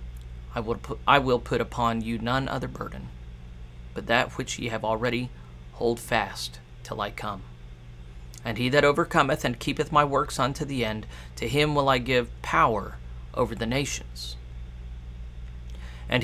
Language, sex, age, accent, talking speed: English, male, 40-59, American, 150 wpm